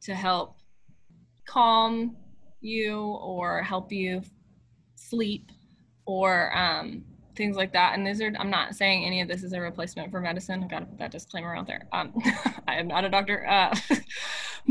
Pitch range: 185-235 Hz